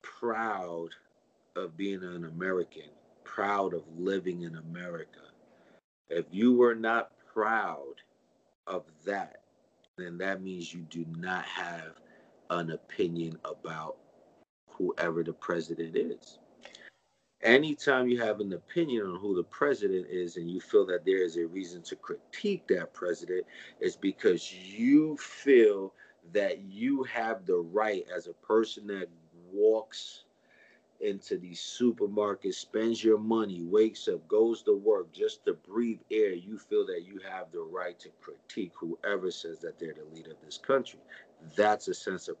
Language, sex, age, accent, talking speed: English, male, 40-59, American, 145 wpm